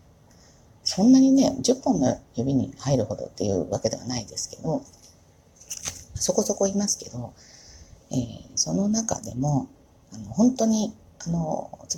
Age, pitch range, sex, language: 40-59, 110-175 Hz, female, Japanese